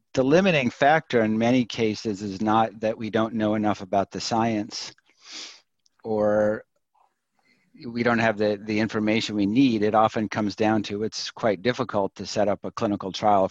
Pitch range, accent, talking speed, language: 100-115 Hz, American, 175 wpm, English